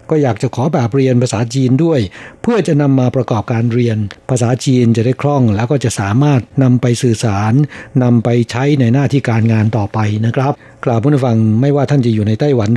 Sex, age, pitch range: male, 60-79, 115-140 Hz